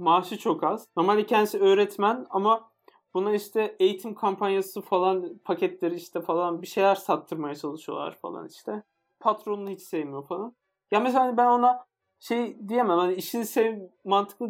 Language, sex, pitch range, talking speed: Turkish, male, 185-230 Hz, 140 wpm